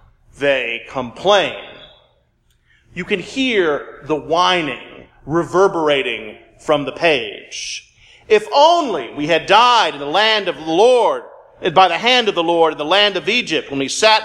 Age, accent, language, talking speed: 40-59, American, English, 150 wpm